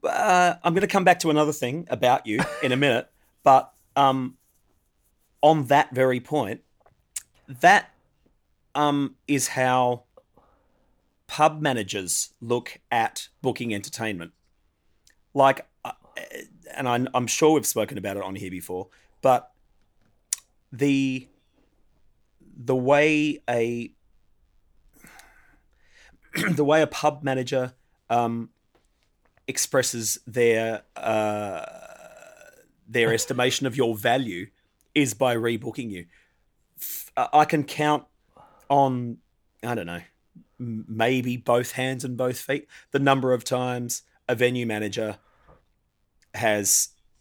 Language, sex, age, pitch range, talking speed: English, male, 30-49, 100-135 Hz, 110 wpm